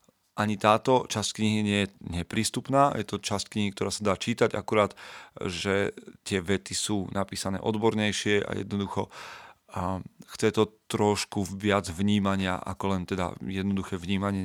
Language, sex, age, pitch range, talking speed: Slovak, male, 40-59, 95-110 Hz, 140 wpm